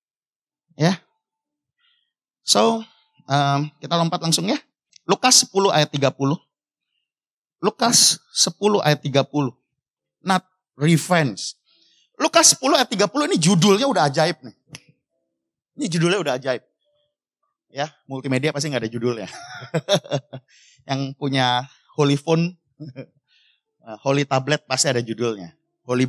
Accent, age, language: native, 30-49, Indonesian